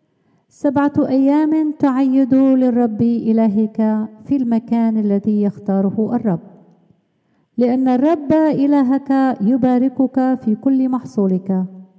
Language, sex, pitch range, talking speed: Arabic, female, 200-260 Hz, 85 wpm